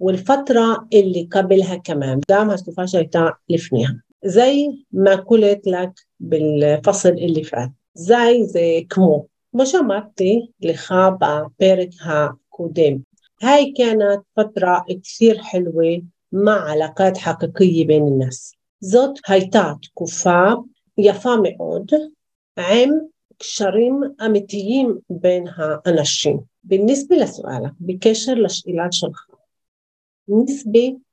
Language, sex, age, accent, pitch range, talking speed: Hebrew, female, 50-69, native, 160-215 Hz, 95 wpm